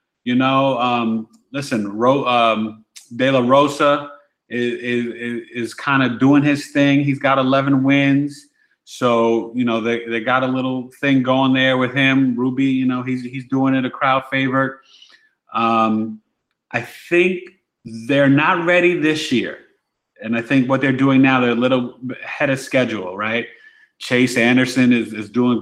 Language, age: English, 30-49